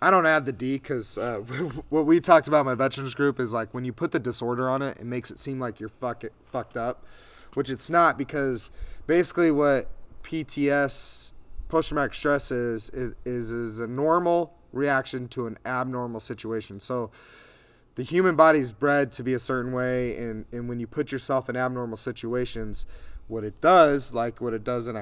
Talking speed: 190 wpm